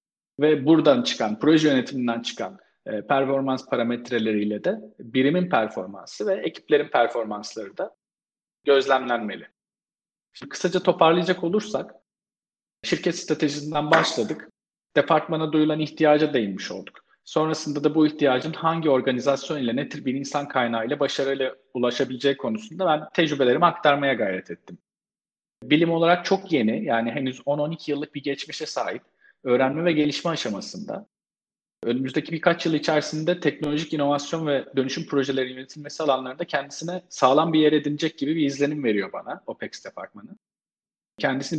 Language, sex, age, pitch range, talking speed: Turkish, male, 40-59, 130-160 Hz, 130 wpm